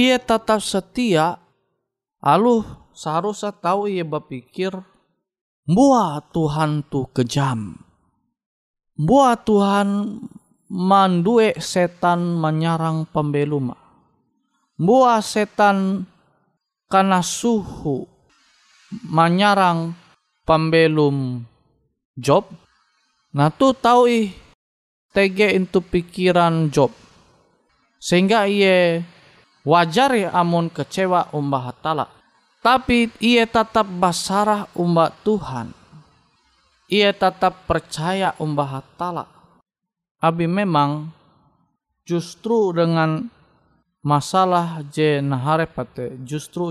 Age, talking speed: 20-39, 75 wpm